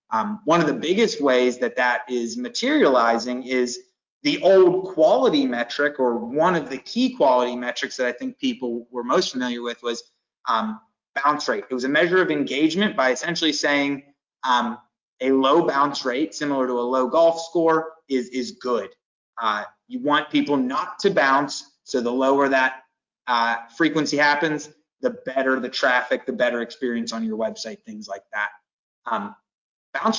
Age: 30-49